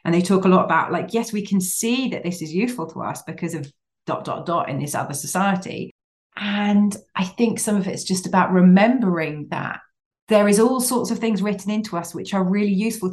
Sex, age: female, 30-49